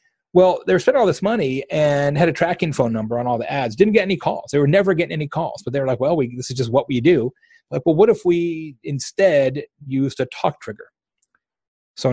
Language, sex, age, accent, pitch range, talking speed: English, male, 30-49, American, 125-180 Hz, 240 wpm